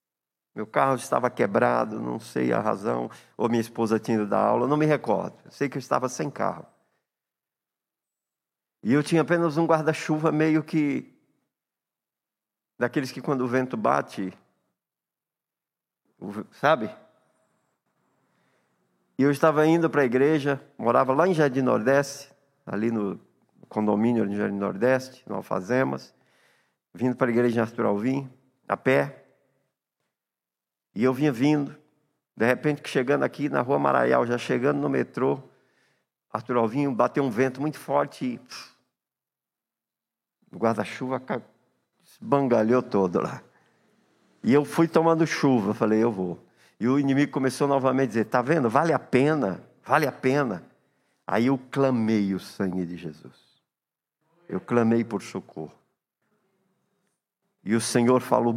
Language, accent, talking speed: Portuguese, Brazilian, 135 wpm